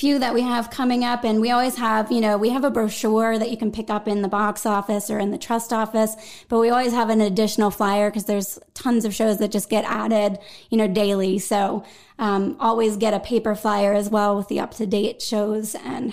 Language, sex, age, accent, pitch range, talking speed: English, female, 20-39, American, 210-235 Hz, 235 wpm